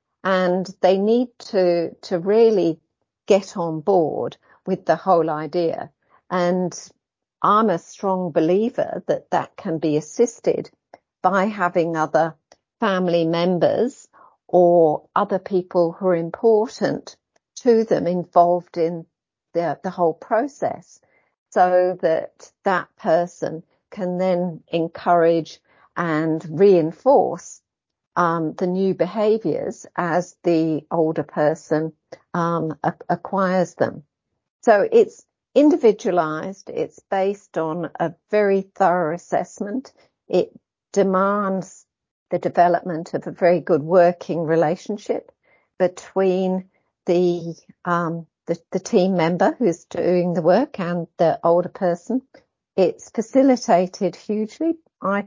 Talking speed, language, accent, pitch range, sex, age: 110 wpm, English, British, 165-195 Hz, female, 50-69